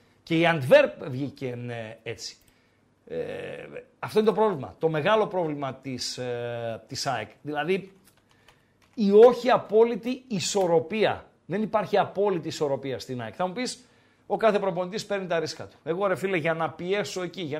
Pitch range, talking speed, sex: 150-200 Hz, 155 wpm, male